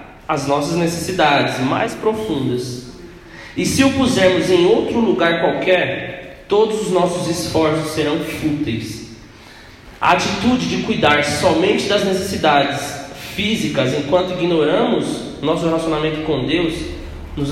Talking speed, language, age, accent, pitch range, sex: 115 wpm, Portuguese, 20-39, Brazilian, 135-175 Hz, male